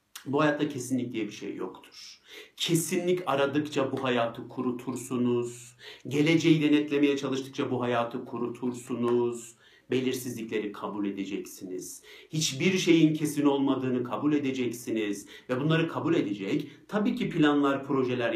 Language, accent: Turkish, native